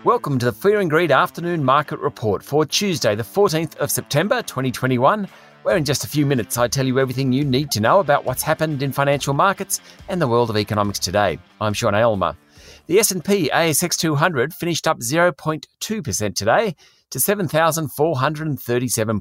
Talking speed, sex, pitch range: 170 wpm, male, 120-170 Hz